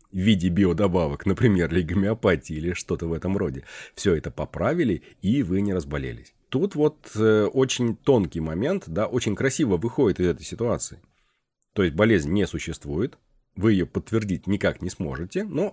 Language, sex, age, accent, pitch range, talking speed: Russian, male, 30-49, native, 90-115 Hz, 165 wpm